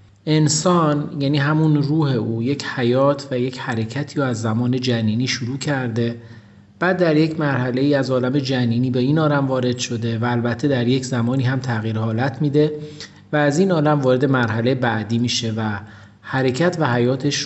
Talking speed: 165 wpm